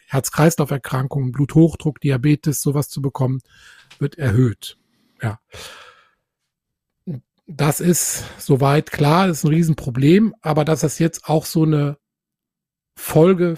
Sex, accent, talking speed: male, German, 110 wpm